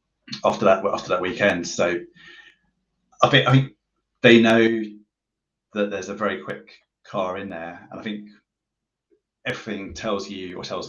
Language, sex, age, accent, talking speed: English, male, 30-49, British, 160 wpm